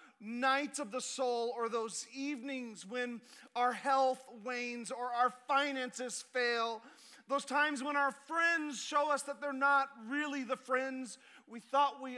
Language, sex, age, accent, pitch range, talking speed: English, male, 40-59, American, 195-265 Hz, 155 wpm